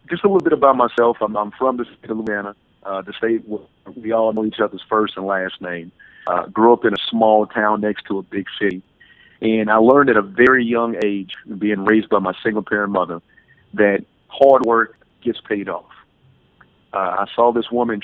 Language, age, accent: English, 50-69, American